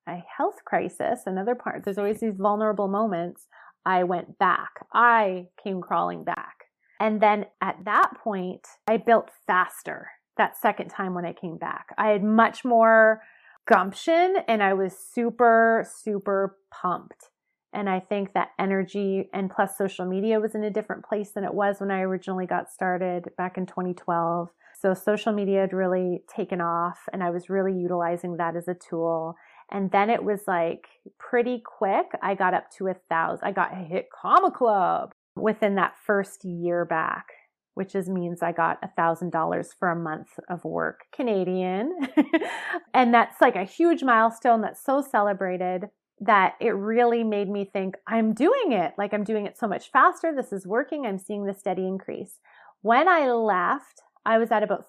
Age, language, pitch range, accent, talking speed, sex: 30-49, English, 185-225 Hz, American, 180 wpm, female